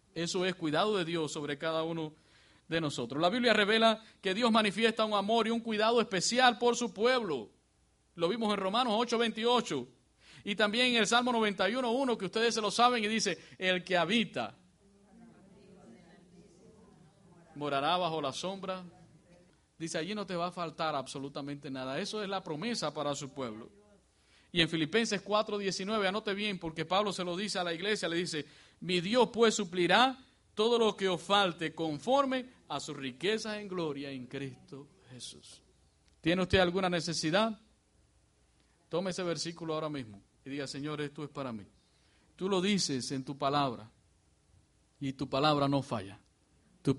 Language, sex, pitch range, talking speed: English, male, 150-215 Hz, 165 wpm